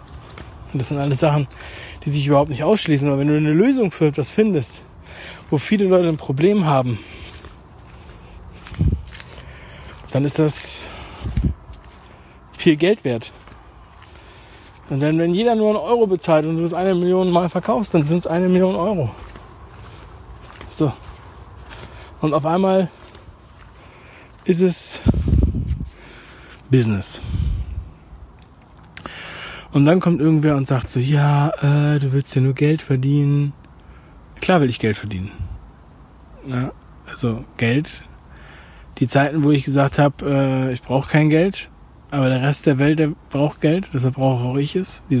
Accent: German